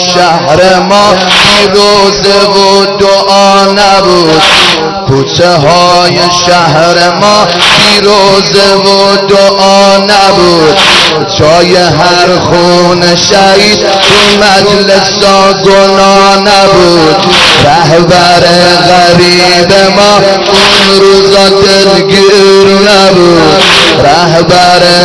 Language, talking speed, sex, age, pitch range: Persian, 95 wpm, male, 30-49, 175-195 Hz